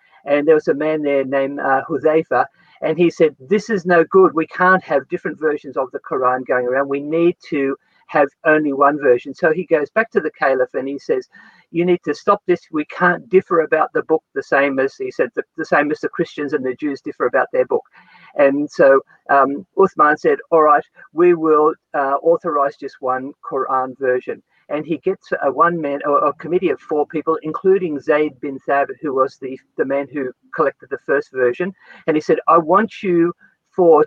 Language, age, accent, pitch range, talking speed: English, 50-69, Australian, 140-180 Hz, 210 wpm